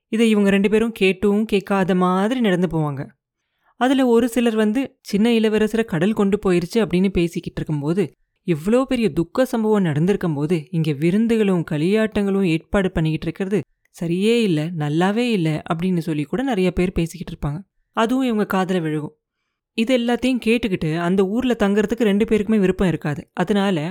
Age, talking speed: 30-49, 145 wpm